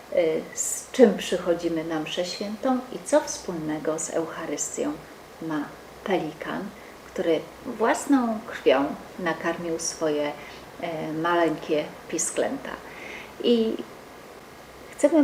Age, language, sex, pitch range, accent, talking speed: 40-59, Polish, female, 160-240 Hz, native, 90 wpm